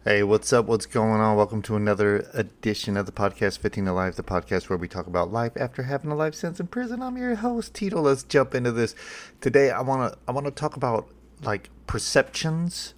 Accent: American